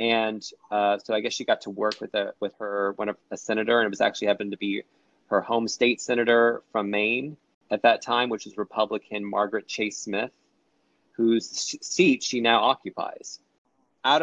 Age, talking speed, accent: 30-49, 185 wpm, American